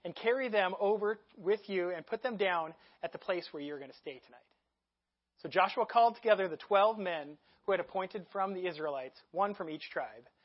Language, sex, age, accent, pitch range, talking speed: English, male, 30-49, American, 145-215 Hz, 205 wpm